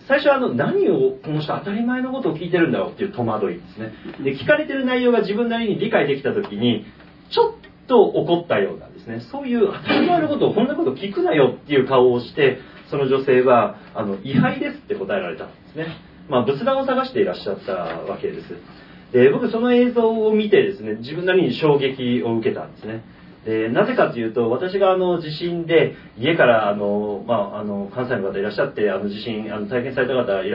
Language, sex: Japanese, male